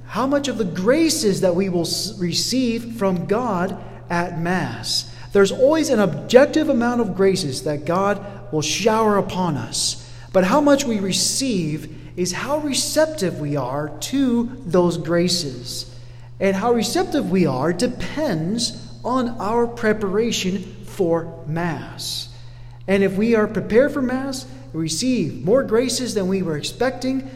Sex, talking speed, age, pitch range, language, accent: male, 145 wpm, 40-59, 145-235 Hz, English, American